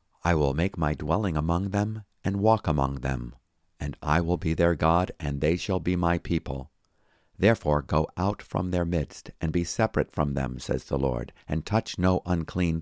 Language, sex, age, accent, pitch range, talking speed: English, male, 50-69, American, 75-100 Hz, 190 wpm